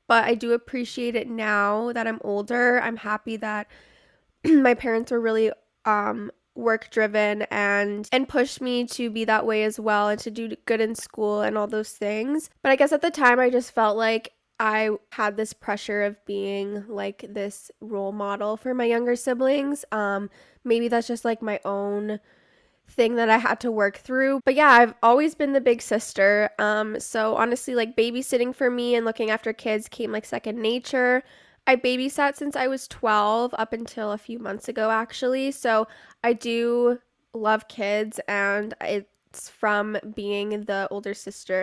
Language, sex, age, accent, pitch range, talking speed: English, female, 10-29, American, 210-245 Hz, 180 wpm